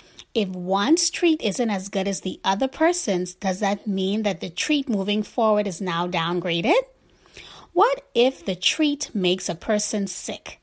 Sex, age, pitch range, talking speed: female, 30-49, 190-290 Hz, 165 wpm